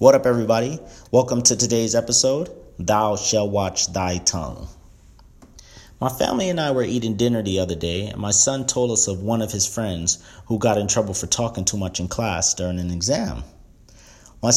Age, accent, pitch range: 40-59, American, 90-115 Hz